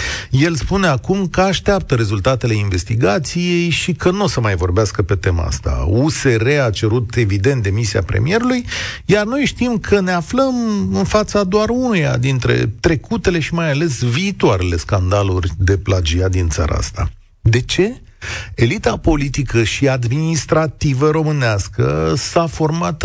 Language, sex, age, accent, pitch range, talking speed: Romanian, male, 40-59, native, 110-175 Hz, 140 wpm